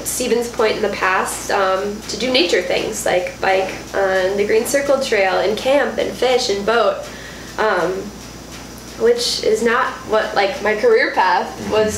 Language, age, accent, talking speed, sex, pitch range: English, 10-29, American, 165 wpm, female, 200-280 Hz